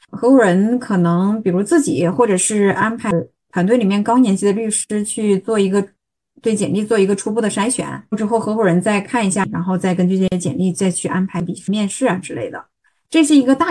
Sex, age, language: female, 20-39, Chinese